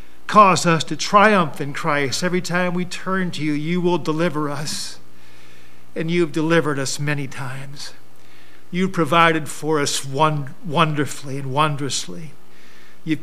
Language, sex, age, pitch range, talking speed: English, male, 50-69, 135-170 Hz, 140 wpm